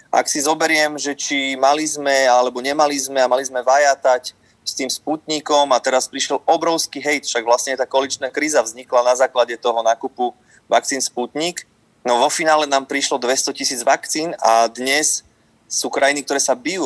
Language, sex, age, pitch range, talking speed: Slovak, male, 30-49, 120-145 Hz, 175 wpm